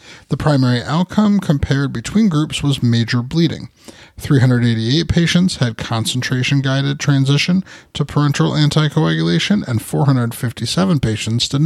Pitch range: 125-160 Hz